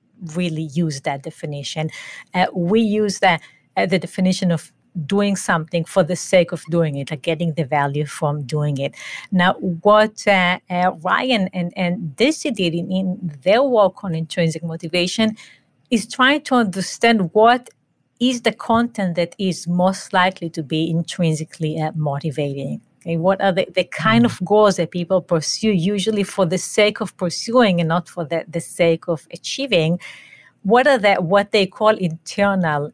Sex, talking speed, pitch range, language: female, 160 wpm, 165-205 Hz, English